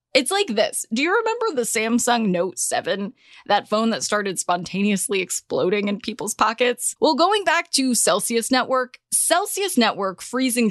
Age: 20-39